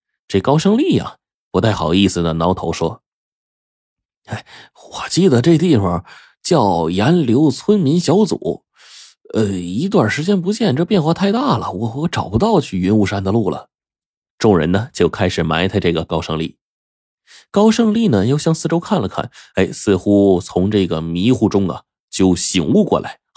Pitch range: 85-125 Hz